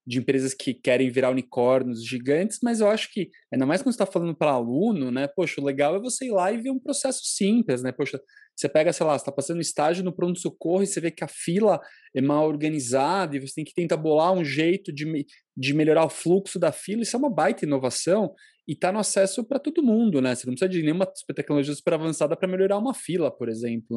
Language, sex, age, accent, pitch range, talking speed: Portuguese, male, 20-39, Brazilian, 140-185 Hz, 245 wpm